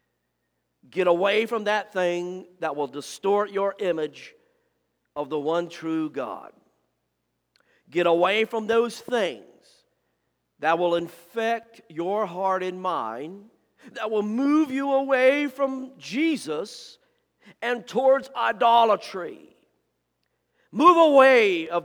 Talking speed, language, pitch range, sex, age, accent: 110 wpm, English, 135-200 Hz, male, 50-69, American